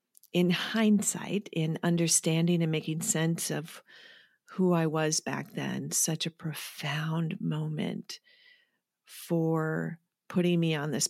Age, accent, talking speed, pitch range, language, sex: 40-59, American, 120 wpm, 165-200 Hz, English, female